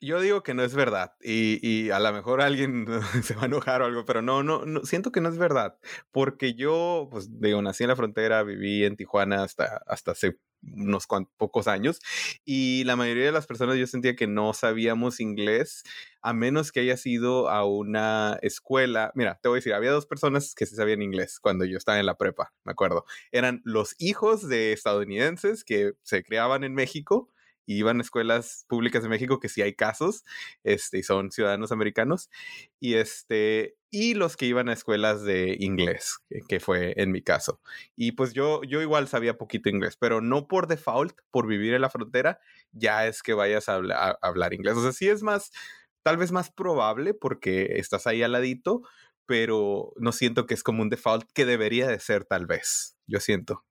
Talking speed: 205 wpm